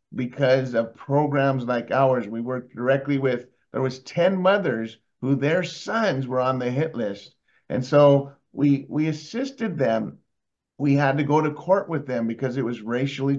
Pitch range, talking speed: 125-145 Hz, 175 wpm